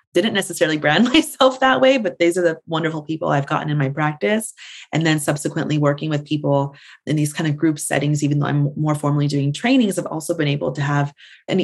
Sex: female